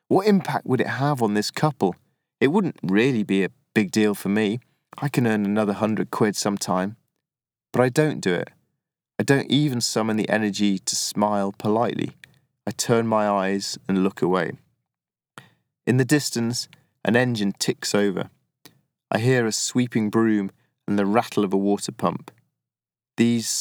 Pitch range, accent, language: 100-125 Hz, British, English